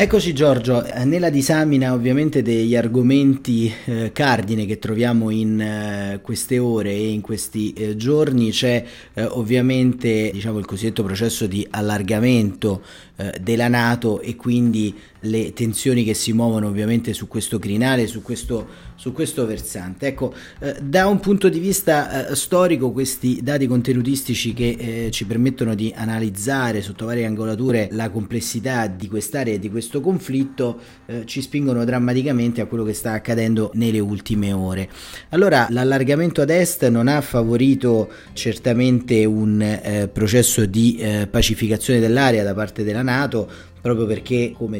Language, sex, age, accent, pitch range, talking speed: Italian, male, 30-49, native, 105-125 Hz, 150 wpm